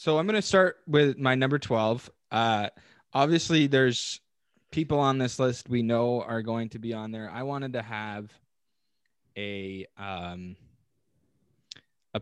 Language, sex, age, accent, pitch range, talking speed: English, male, 20-39, American, 110-140 Hz, 150 wpm